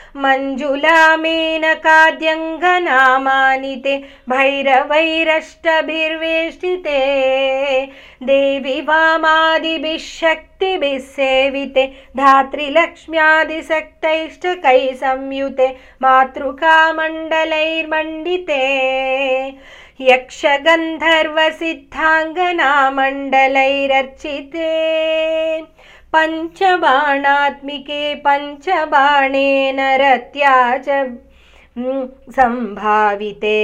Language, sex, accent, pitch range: Telugu, female, native, 265-315 Hz